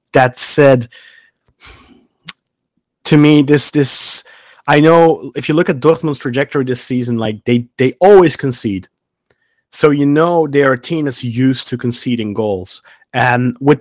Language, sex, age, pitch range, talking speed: English, male, 30-49, 120-155 Hz, 150 wpm